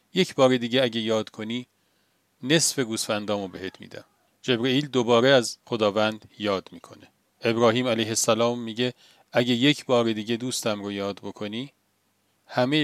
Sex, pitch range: male, 105-130 Hz